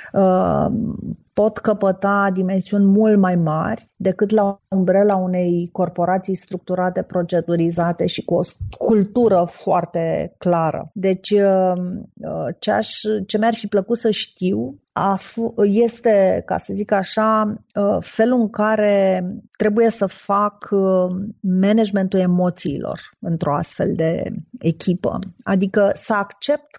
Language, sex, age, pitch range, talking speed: Romanian, female, 30-49, 180-210 Hz, 105 wpm